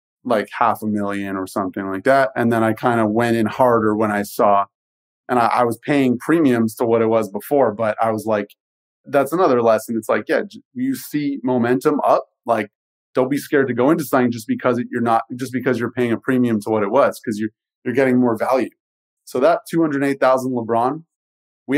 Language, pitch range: English, 115-135 Hz